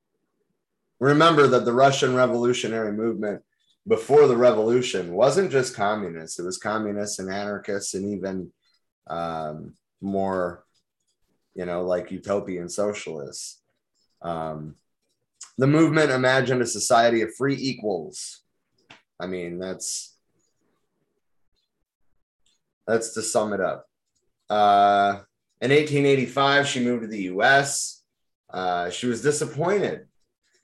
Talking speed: 110 wpm